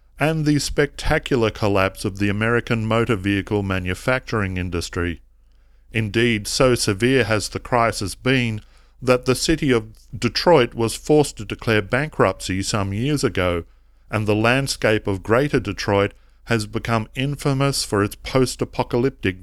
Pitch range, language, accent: 95-125 Hz, English, Australian